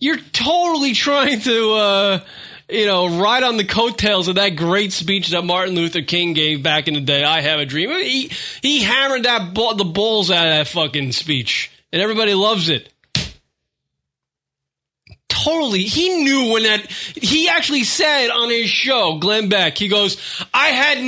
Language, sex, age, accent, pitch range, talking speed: English, male, 20-39, American, 195-290 Hz, 175 wpm